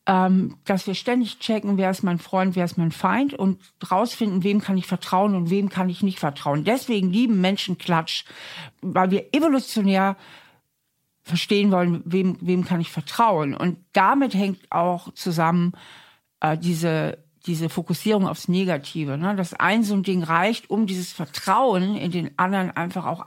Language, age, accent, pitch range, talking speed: German, 50-69, German, 165-200 Hz, 170 wpm